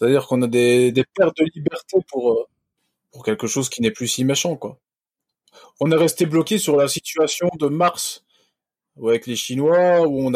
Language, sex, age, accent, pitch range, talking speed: French, male, 20-39, French, 115-150 Hz, 185 wpm